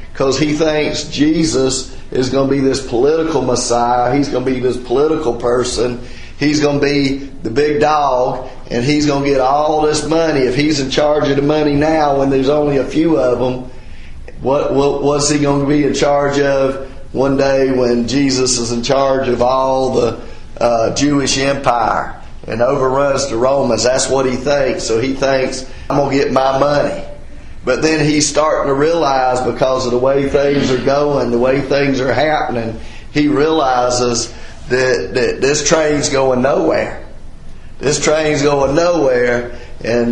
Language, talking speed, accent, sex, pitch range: English, 175 wpm, American, male, 125-145 Hz